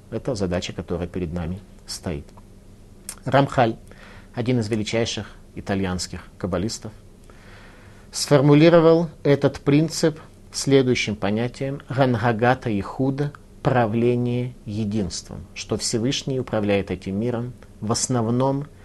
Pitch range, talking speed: 100-140 Hz, 95 wpm